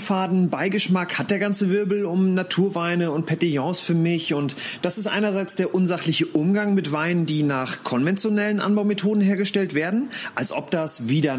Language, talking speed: German, 160 wpm